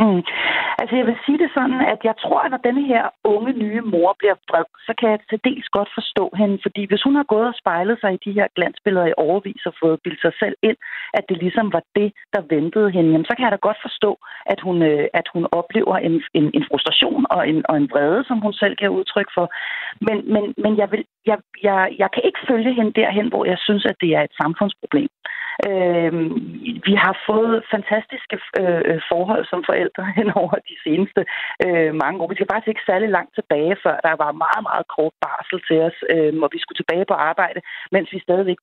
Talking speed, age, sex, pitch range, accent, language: 225 wpm, 40-59, female, 170-220 Hz, native, Danish